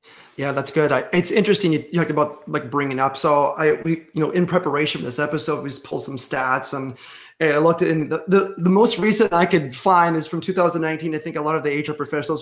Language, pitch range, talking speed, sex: English, 145-180 Hz, 240 wpm, male